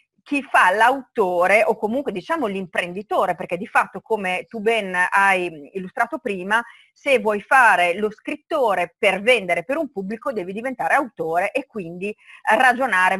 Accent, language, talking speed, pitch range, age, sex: native, Italian, 145 wpm, 190-255 Hz, 40-59, female